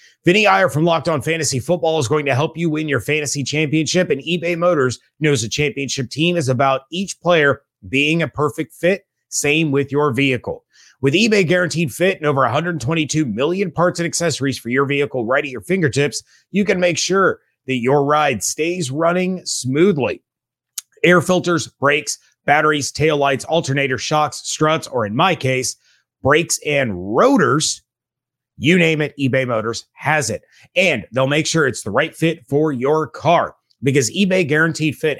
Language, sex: English, male